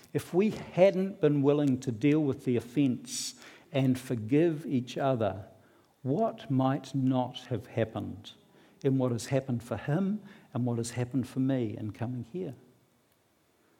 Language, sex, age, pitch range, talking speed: English, male, 60-79, 130-195 Hz, 150 wpm